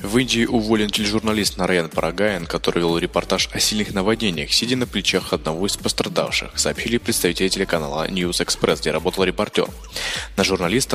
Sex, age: male, 20-39